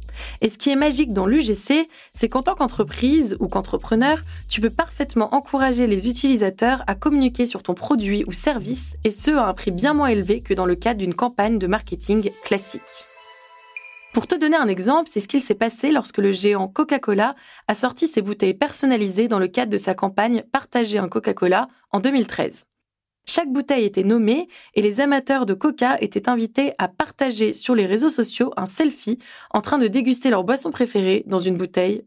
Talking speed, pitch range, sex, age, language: 190 wpm, 205-275 Hz, female, 20-39, French